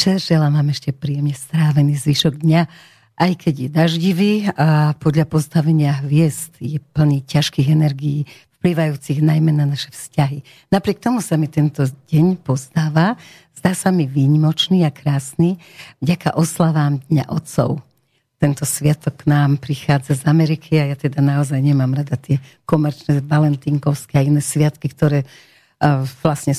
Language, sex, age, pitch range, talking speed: English, female, 50-69, 140-165 Hz, 140 wpm